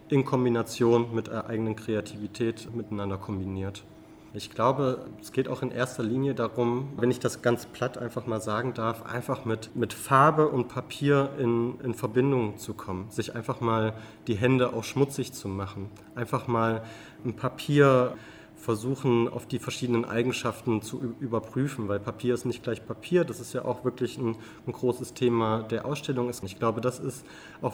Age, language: 30-49, German